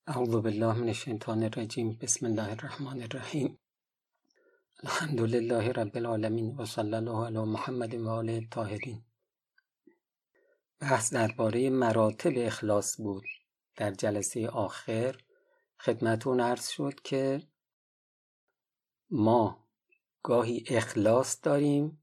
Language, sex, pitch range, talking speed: Persian, male, 110-145 Hz, 100 wpm